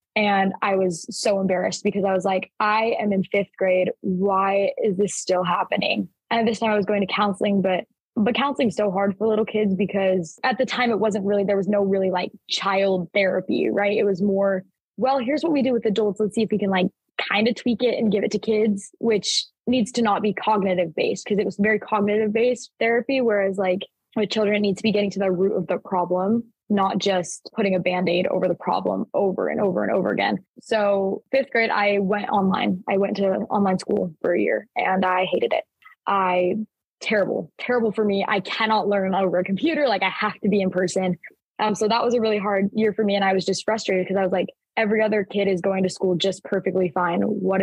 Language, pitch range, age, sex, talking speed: English, 190-220 Hz, 20-39, female, 230 wpm